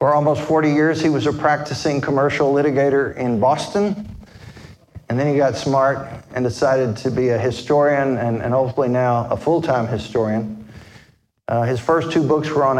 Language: English